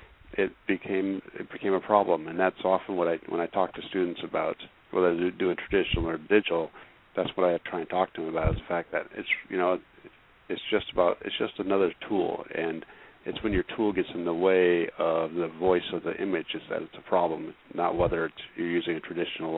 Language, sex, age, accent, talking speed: English, male, 50-69, American, 225 wpm